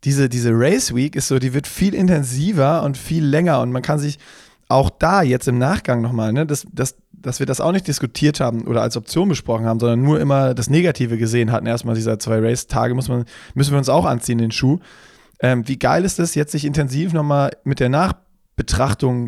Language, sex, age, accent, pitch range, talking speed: German, male, 20-39, German, 125-150 Hz, 220 wpm